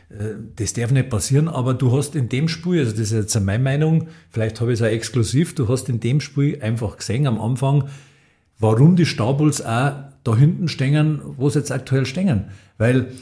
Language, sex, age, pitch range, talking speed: German, male, 50-69, 115-150 Hz, 200 wpm